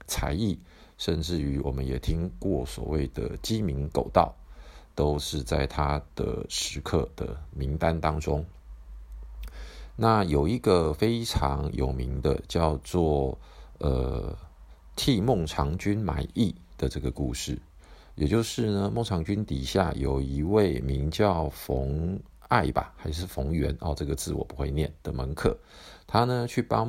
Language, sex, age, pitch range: Chinese, male, 50-69, 70-95 Hz